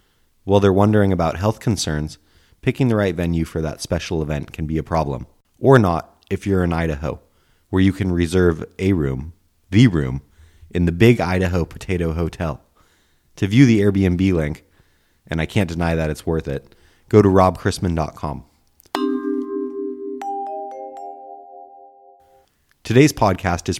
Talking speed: 145 wpm